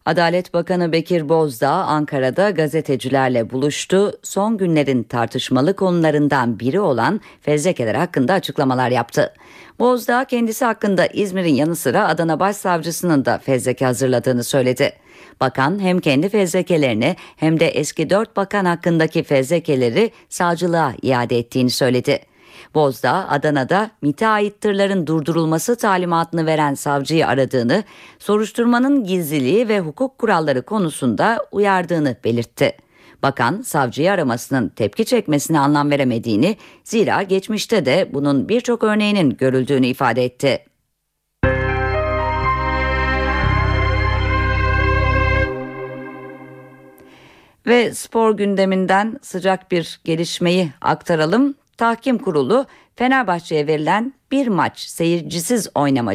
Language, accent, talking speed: Turkish, native, 100 wpm